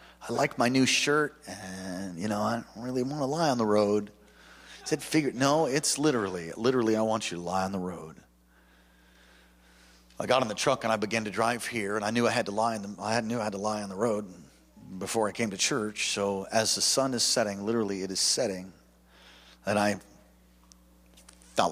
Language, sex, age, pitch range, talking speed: English, male, 40-59, 90-110 Hz, 220 wpm